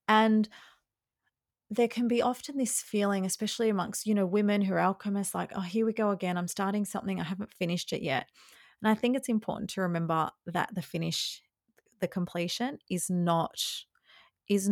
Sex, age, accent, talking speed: female, 30-49, Australian, 180 wpm